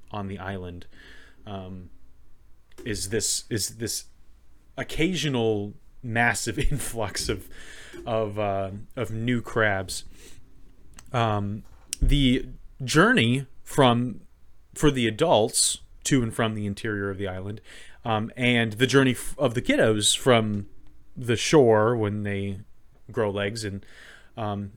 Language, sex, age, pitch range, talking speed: English, male, 30-49, 100-140 Hz, 115 wpm